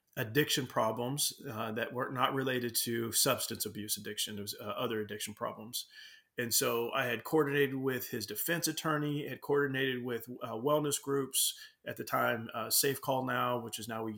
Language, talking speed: English, 175 wpm